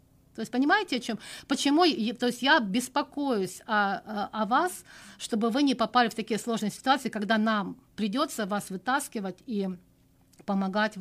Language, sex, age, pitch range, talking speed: Russian, female, 50-69, 200-265 Hz, 160 wpm